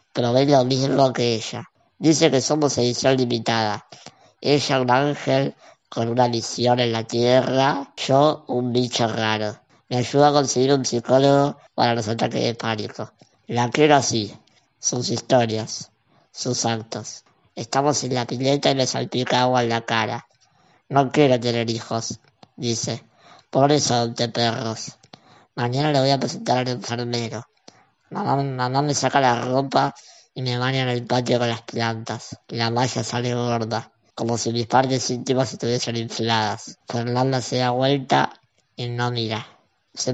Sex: male